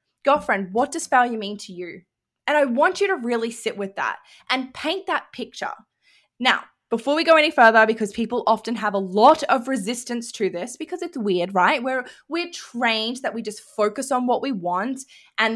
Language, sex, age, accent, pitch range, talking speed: English, female, 10-29, Australian, 205-270 Hz, 200 wpm